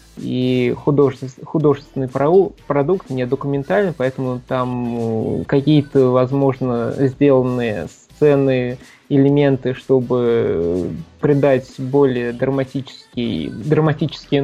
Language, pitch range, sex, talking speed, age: Russian, 130-145 Hz, male, 70 wpm, 20-39